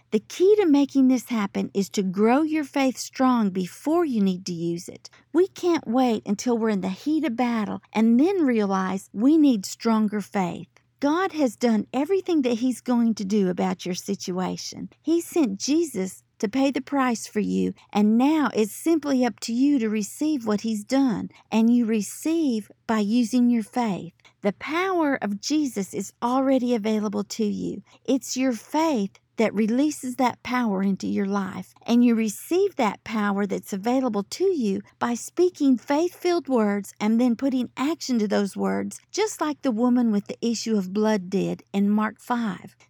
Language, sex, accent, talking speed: English, female, American, 180 wpm